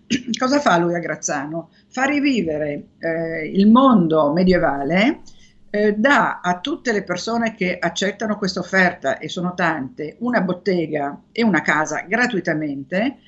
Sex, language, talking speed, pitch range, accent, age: female, Italian, 135 wpm, 160-205 Hz, native, 50-69